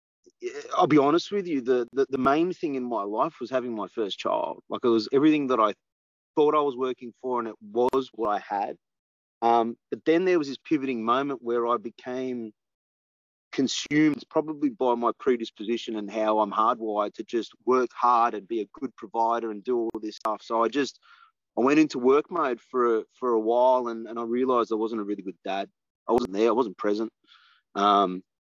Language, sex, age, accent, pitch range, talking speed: English, male, 30-49, Australian, 110-135 Hz, 205 wpm